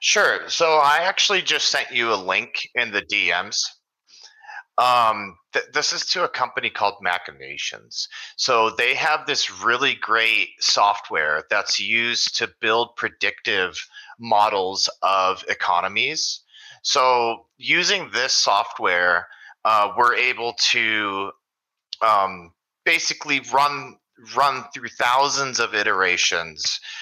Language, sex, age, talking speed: Russian, male, 30-49, 115 wpm